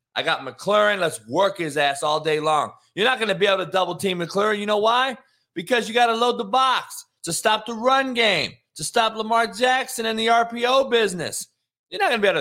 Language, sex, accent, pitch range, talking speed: English, male, American, 165-235 Hz, 230 wpm